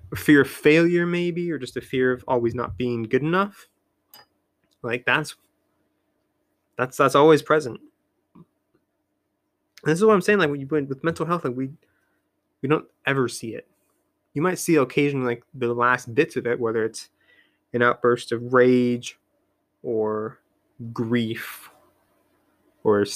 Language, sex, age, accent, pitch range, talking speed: English, male, 20-39, American, 120-185 Hz, 155 wpm